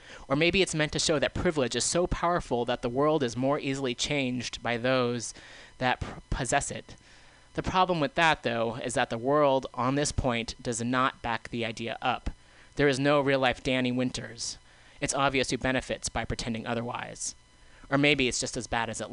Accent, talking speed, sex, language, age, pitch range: American, 195 wpm, male, English, 30-49, 120-150 Hz